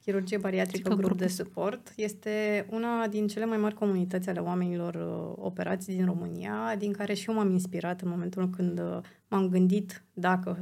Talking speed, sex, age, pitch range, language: 165 wpm, female, 20-39, 180-205 Hz, Romanian